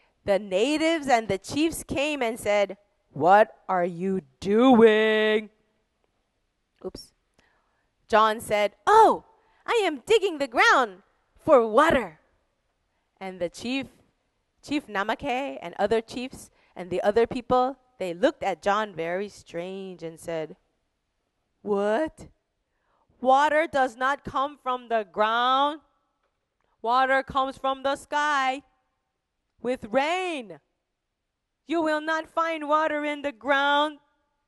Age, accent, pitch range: 20-39, American, 190-280 Hz